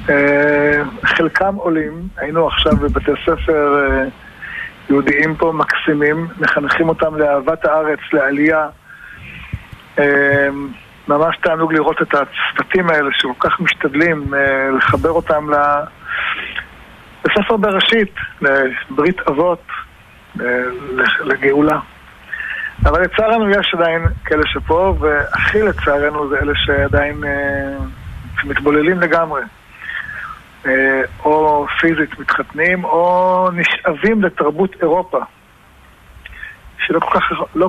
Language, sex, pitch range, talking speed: Hebrew, male, 140-170 Hz, 90 wpm